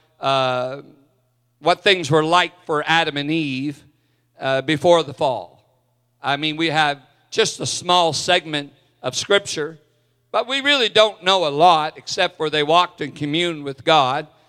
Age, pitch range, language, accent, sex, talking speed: 50-69, 145-190 Hz, English, American, male, 155 wpm